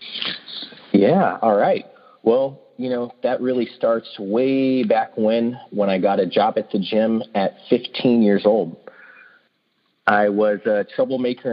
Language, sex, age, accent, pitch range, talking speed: English, male, 30-49, American, 100-125 Hz, 145 wpm